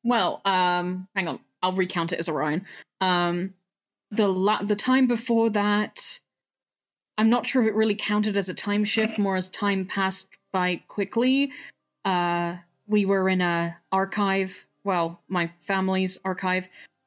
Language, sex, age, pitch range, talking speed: English, female, 30-49, 185-240 Hz, 150 wpm